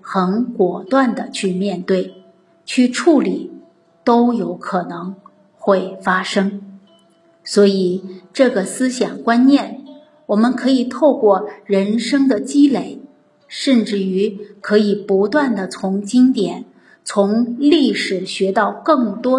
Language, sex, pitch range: Chinese, female, 190-245 Hz